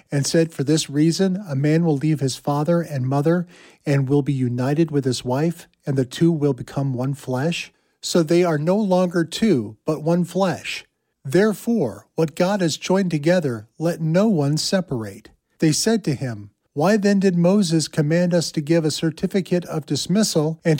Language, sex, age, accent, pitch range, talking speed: English, male, 50-69, American, 140-175 Hz, 180 wpm